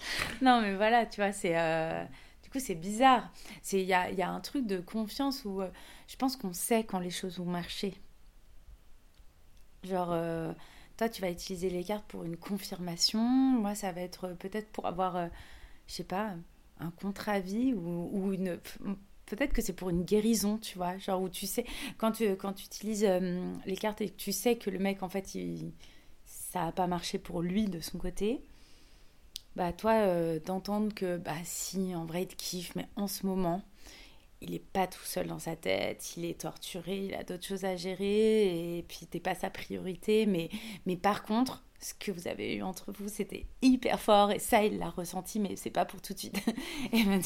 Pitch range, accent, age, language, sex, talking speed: 180-215 Hz, French, 30-49, French, female, 210 wpm